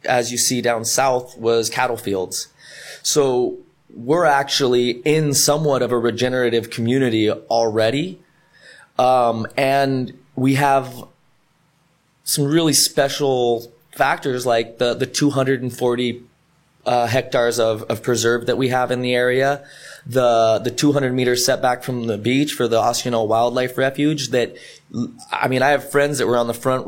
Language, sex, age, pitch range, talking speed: English, male, 20-39, 115-135 Hz, 150 wpm